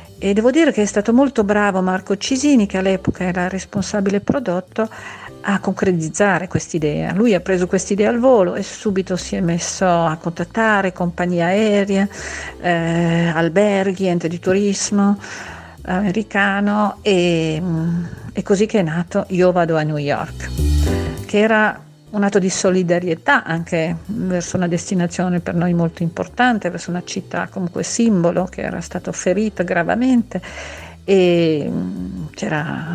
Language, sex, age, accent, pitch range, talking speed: Italian, female, 50-69, native, 165-200 Hz, 140 wpm